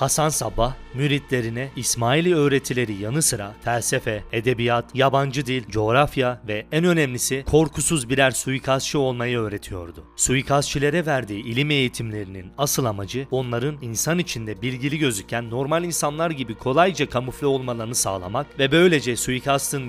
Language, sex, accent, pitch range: Turkish, male, native, 120-145 Hz